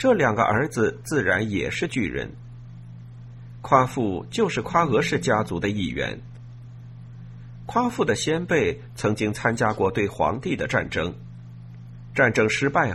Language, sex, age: Chinese, male, 50-69